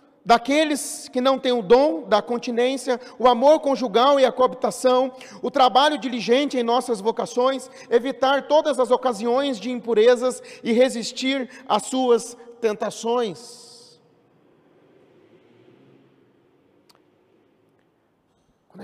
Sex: male